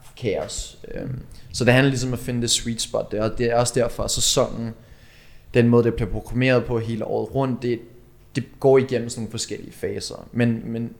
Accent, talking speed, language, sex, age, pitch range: native, 205 wpm, Danish, male, 20-39, 110-125 Hz